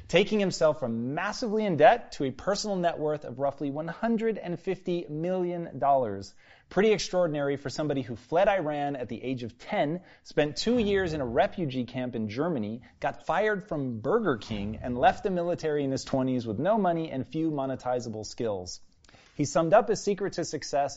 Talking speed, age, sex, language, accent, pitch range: 180 wpm, 30-49, male, Hindi, American, 125-165 Hz